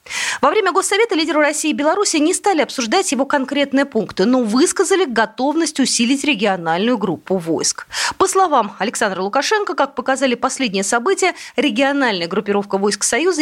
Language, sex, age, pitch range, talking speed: Russian, female, 20-39, 220-305 Hz, 145 wpm